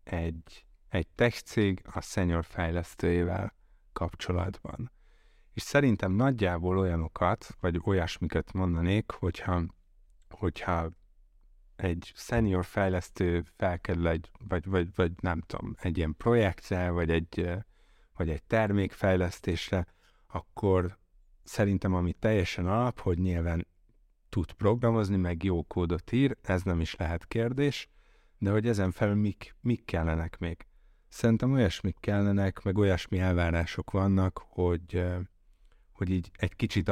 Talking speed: 120 wpm